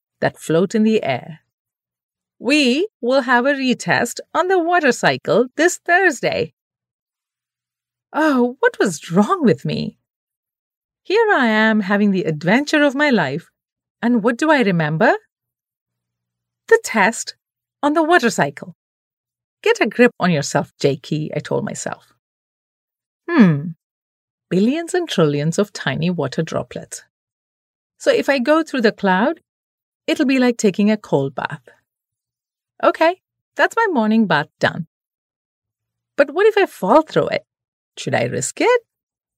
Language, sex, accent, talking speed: English, female, Indian, 135 wpm